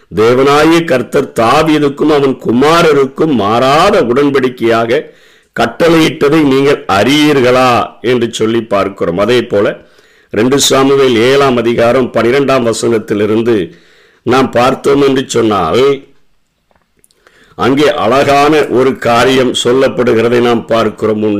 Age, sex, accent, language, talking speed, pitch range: 50-69, male, native, Tamil, 95 wpm, 120-140 Hz